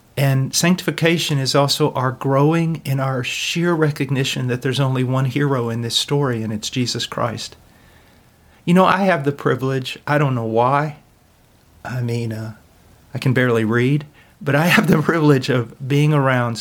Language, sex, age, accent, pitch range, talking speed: English, male, 40-59, American, 130-170 Hz, 170 wpm